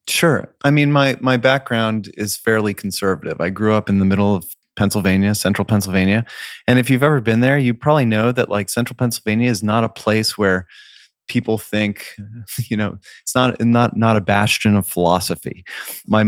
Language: English